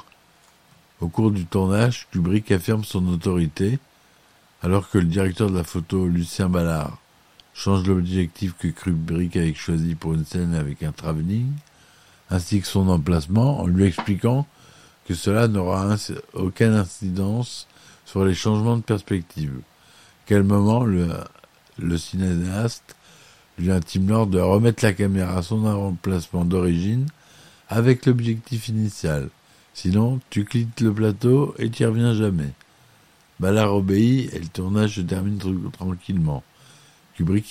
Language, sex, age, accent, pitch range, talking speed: French, male, 60-79, French, 85-110 Hz, 135 wpm